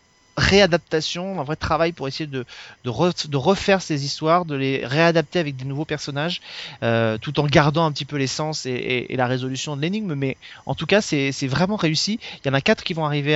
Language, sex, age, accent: French, male, 30-49, French